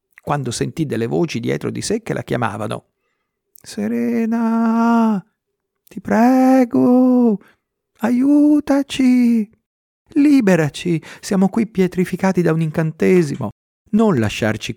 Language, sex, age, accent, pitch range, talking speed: Italian, male, 50-69, native, 115-190 Hz, 95 wpm